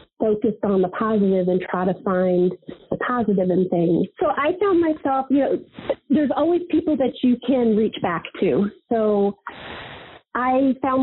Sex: female